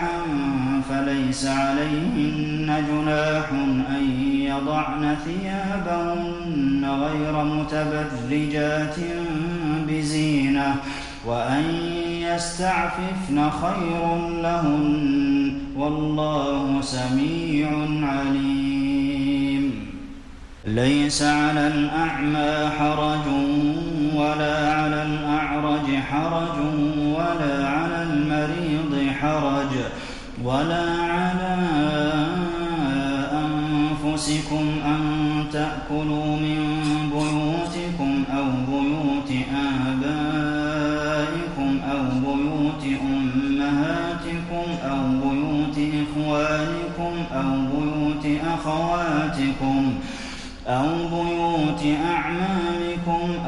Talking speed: 55 wpm